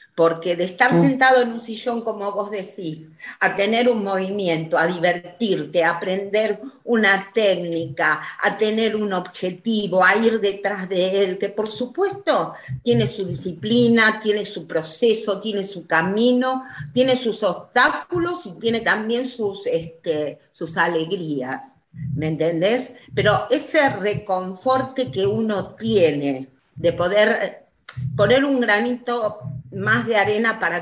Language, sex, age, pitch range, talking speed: Spanish, female, 40-59, 165-220 Hz, 130 wpm